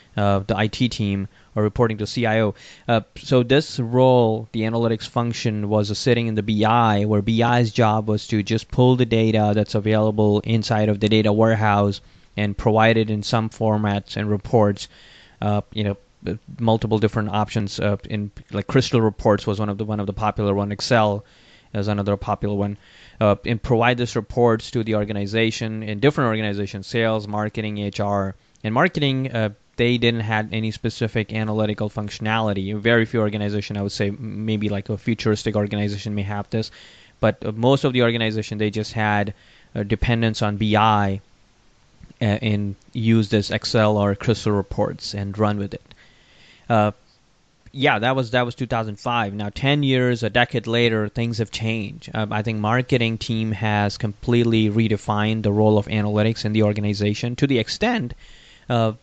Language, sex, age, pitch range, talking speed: English, male, 20-39, 105-115 Hz, 170 wpm